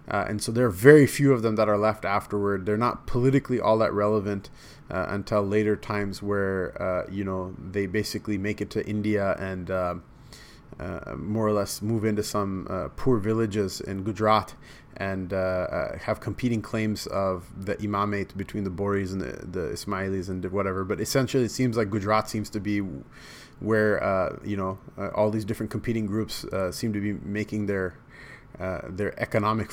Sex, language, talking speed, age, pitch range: male, English, 190 wpm, 20-39, 100-110 Hz